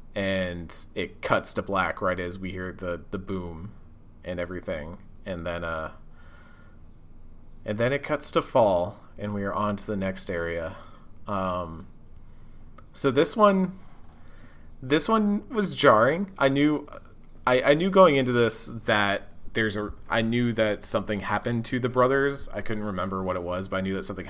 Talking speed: 170 wpm